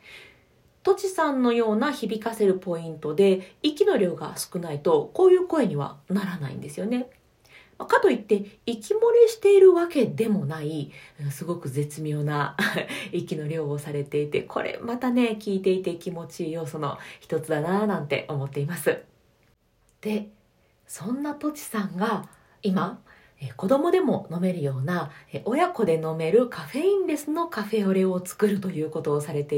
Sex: female